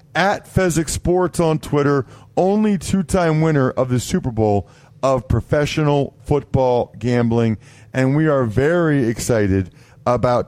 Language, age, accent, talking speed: English, 40-59, American, 125 wpm